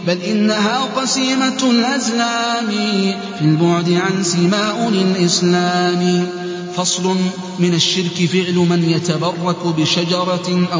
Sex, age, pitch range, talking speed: male, 30-49, 175-205 Hz, 90 wpm